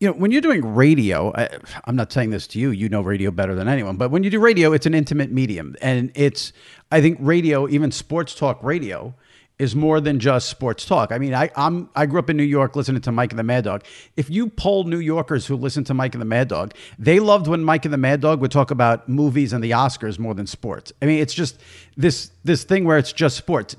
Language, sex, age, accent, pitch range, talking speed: English, male, 50-69, American, 120-160 Hz, 255 wpm